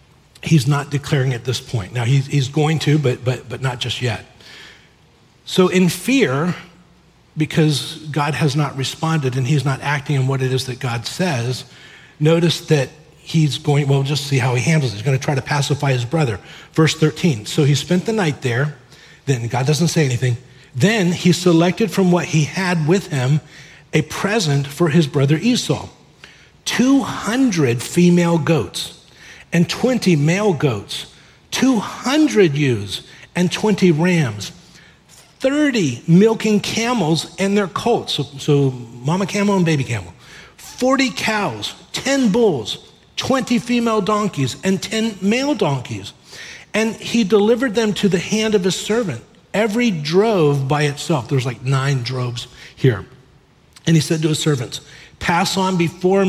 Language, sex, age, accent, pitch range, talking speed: English, male, 40-59, American, 135-185 Hz, 155 wpm